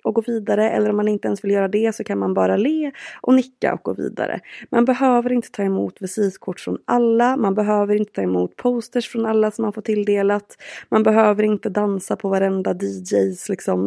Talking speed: 210 wpm